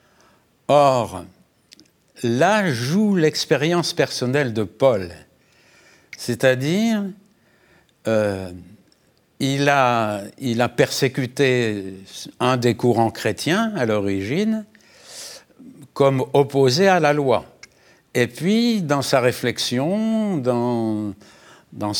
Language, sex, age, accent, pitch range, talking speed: French, male, 60-79, French, 115-170 Hz, 80 wpm